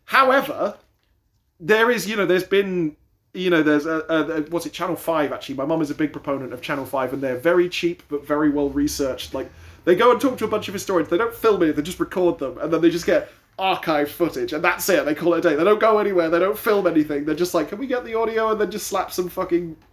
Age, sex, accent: 30-49, male, British